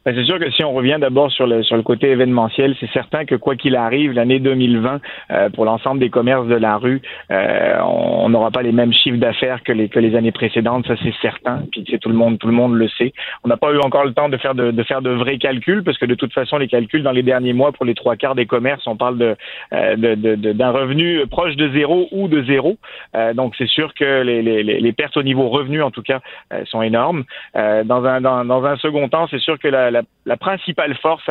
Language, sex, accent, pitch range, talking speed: French, male, French, 120-140 Hz, 265 wpm